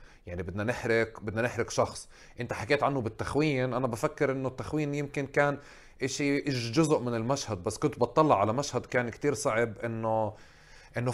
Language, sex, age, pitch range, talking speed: Arabic, male, 20-39, 110-150 Hz, 165 wpm